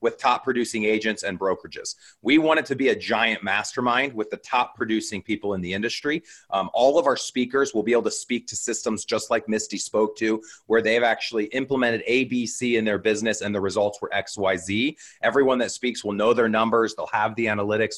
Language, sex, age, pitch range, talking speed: English, male, 30-49, 105-125 Hz, 210 wpm